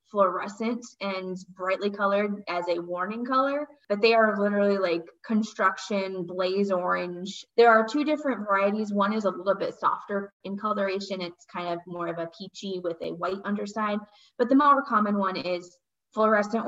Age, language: 20-39, English